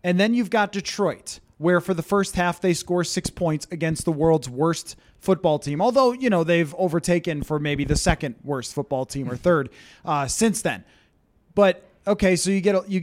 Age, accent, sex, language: 20-39, American, male, English